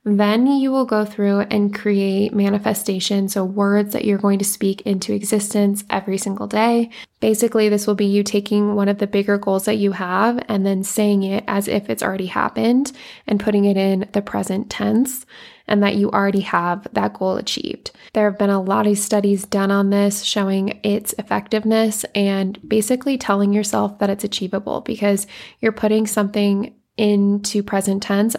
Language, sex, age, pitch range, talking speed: English, female, 20-39, 195-215 Hz, 180 wpm